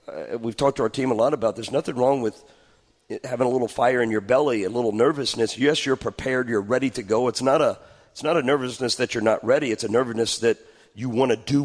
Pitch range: 110-130 Hz